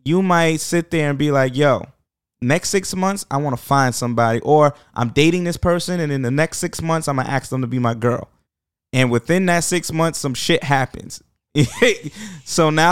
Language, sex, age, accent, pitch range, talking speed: English, male, 20-39, American, 120-155 Hz, 215 wpm